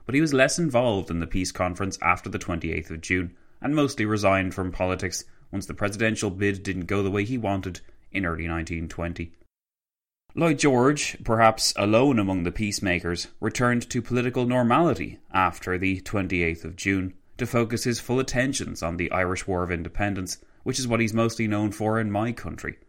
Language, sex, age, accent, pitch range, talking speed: English, male, 20-39, Irish, 90-115 Hz, 180 wpm